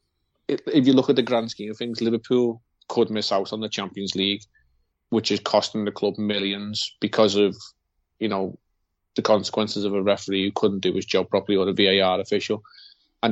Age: 20-39